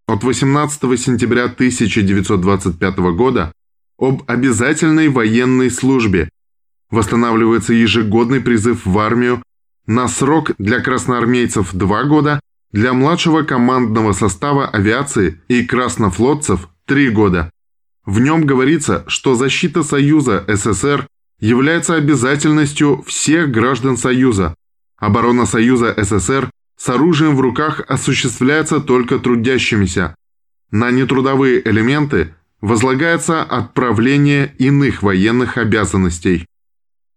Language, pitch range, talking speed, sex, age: Russian, 105-135 Hz, 95 wpm, male, 20-39